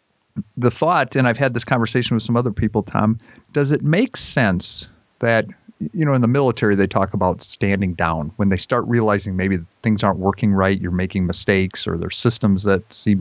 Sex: male